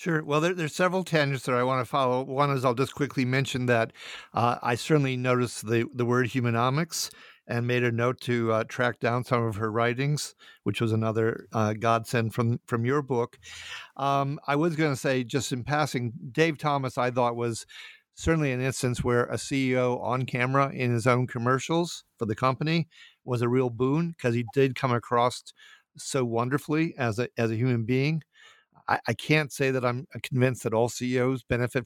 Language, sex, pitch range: English, male, 120-145 Hz